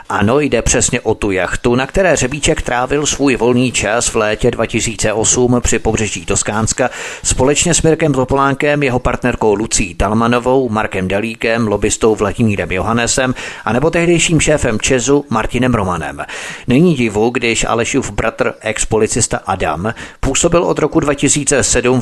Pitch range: 110-130 Hz